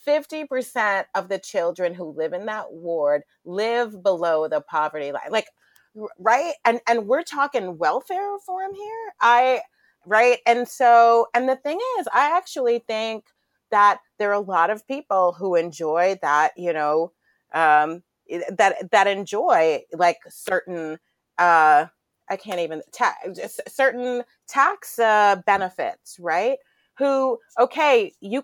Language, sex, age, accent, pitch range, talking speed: English, female, 30-49, American, 185-265 Hz, 135 wpm